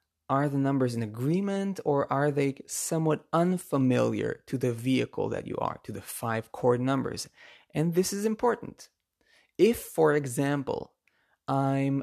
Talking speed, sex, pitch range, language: 145 wpm, male, 120-145 Hz, English